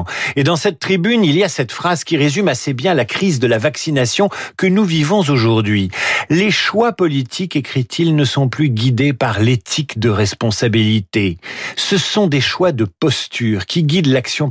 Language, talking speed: French, 180 wpm